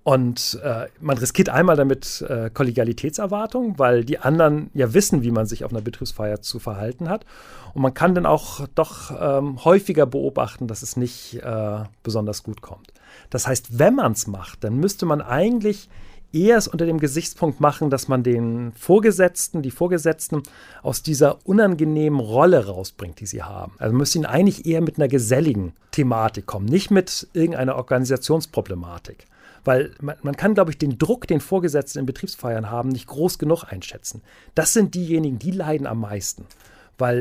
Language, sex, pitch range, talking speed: German, male, 120-170 Hz, 175 wpm